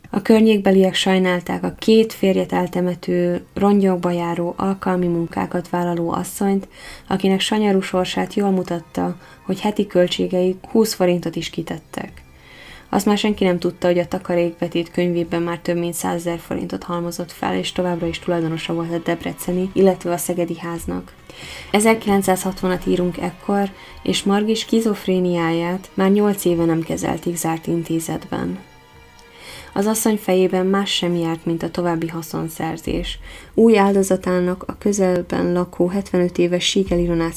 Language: Hungarian